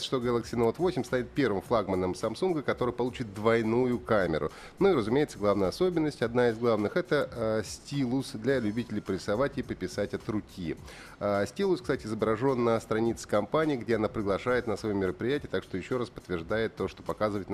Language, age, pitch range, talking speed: Russian, 30-49, 100-130 Hz, 175 wpm